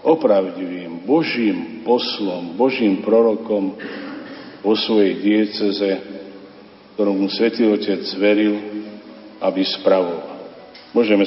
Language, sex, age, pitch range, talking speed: Slovak, male, 50-69, 100-115 Hz, 80 wpm